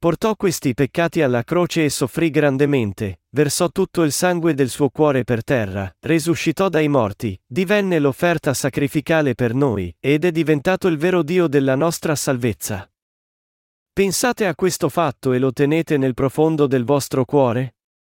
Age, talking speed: 40-59, 150 wpm